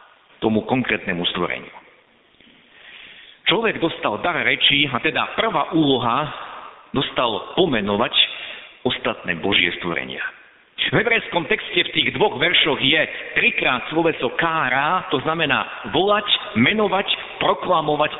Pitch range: 130-210 Hz